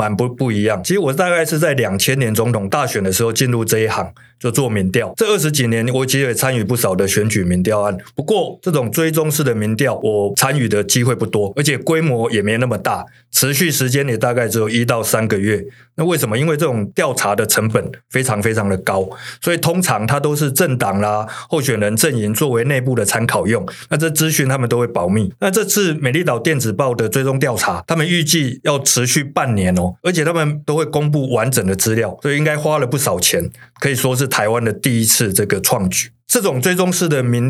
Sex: male